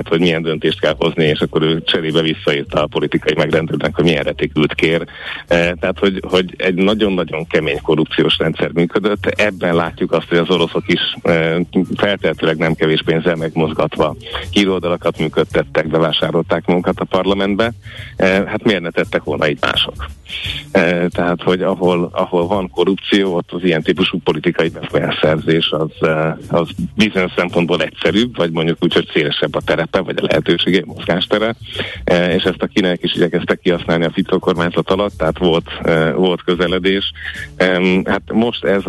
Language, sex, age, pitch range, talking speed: Hungarian, male, 60-79, 80-95 Hz, 145 wpm